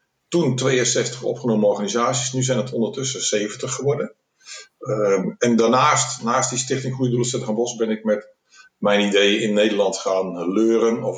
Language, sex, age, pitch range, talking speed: Dutch, male, 50-69, 110-135 Hz, 160 wpm